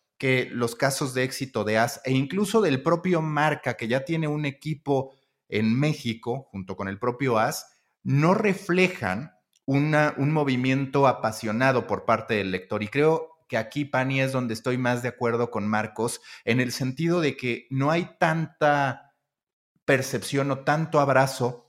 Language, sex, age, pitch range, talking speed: Spanish, male, 30-49, 115-145 Hz, 160 wpm